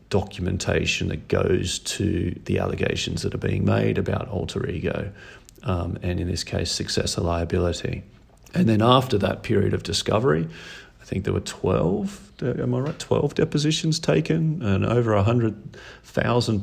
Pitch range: 95-110 Hz